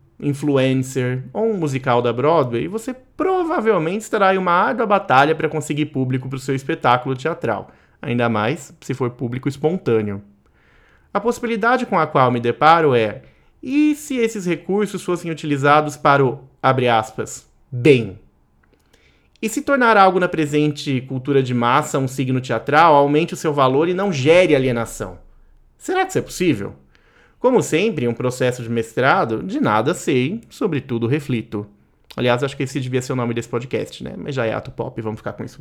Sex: male